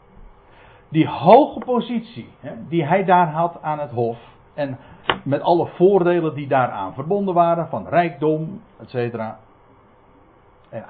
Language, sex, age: Dutch, male, 60-79